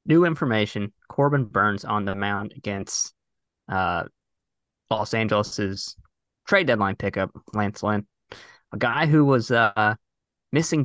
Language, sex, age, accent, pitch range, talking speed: English, male, 20-39, American, 100-130 Hz, 120 wpm